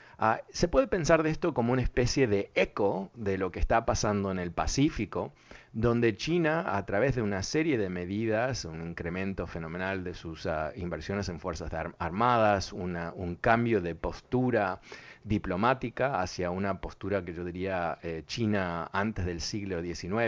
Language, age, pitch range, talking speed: Spanish, 40-59, 85-105 Hz, 155 wpm